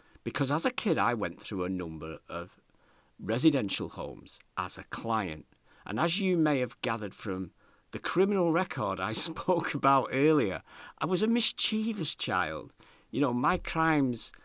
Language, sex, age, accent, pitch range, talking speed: English, male, 50-69, British, 110-180 Hz, 160 wpm